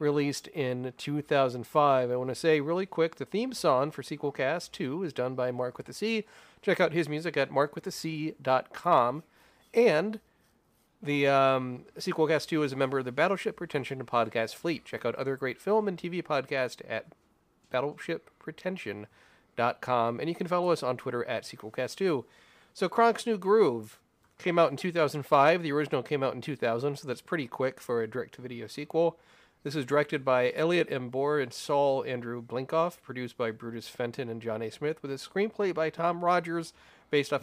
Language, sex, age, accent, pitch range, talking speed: English, male, 30-49, American, 125-165 Hz, 185 wpm